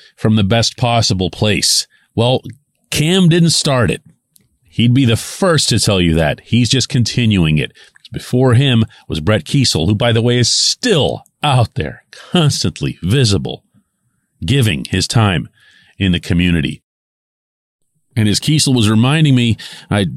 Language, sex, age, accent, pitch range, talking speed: English, male, 40-59, American, 95-135 Hz, 150 wpm